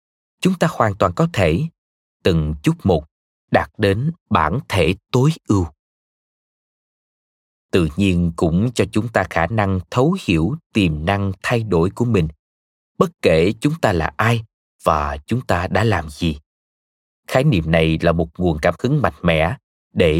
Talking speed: 160 wpm